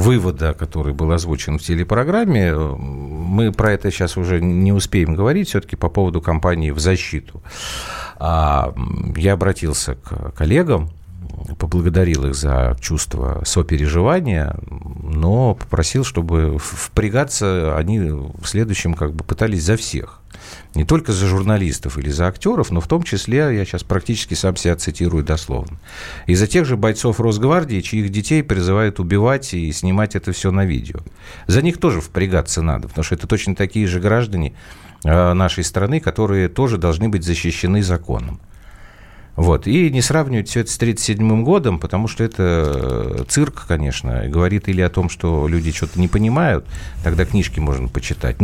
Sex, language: male, Russian